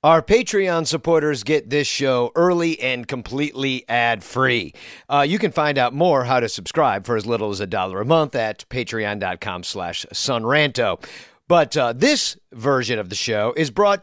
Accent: American